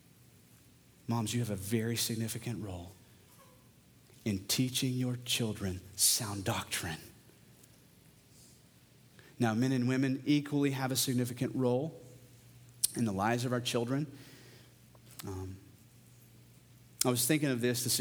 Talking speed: 115 wpm